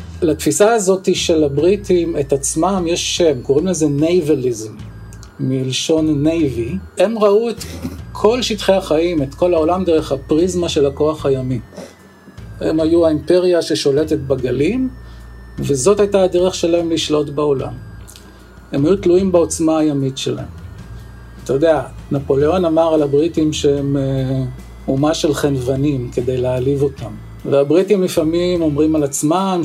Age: 50-69